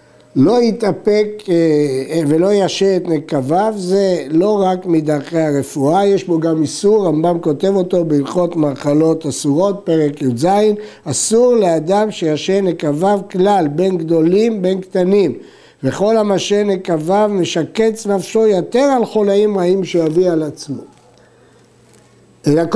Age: 60-79